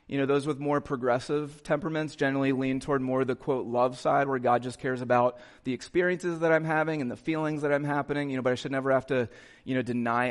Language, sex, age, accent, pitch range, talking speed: English, male, 30-49, American, 125-150 Hz, 245 wpm